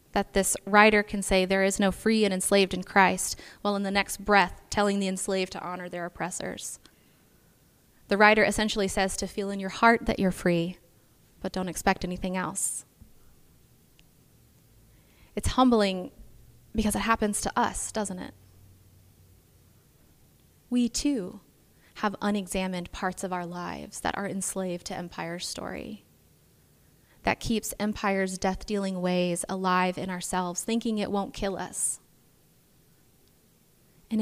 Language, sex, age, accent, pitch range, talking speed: English, female, 20-39, American, 185-210 Hz, 140 wpm